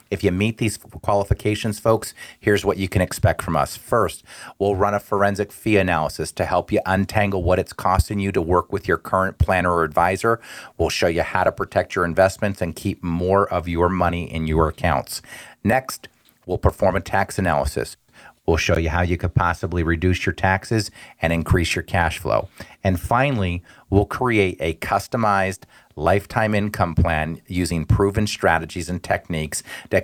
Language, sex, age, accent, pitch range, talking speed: English, male, 40-59, American, 90-110 Hz, 180 wpm